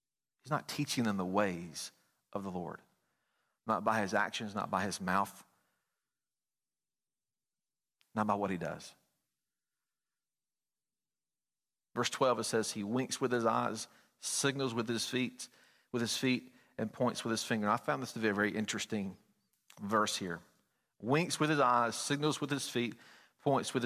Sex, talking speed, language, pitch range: male, 160 wpm, English, 115-145 Hz